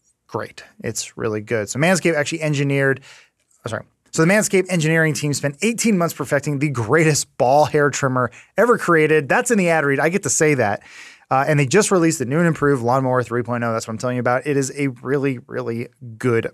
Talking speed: 220 wpm